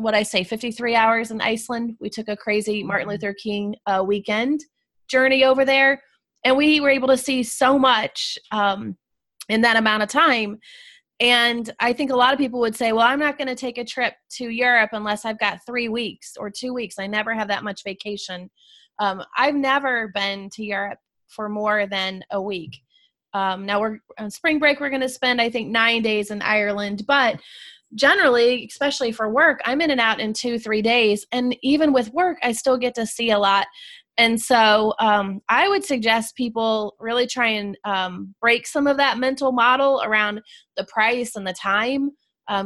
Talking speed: 200 wpm